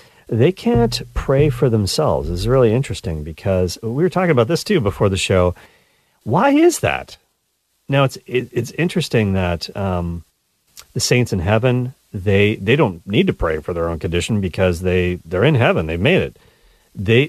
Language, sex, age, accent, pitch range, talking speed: English, male, 40-59, American, 95-115 Hz, 180 wpm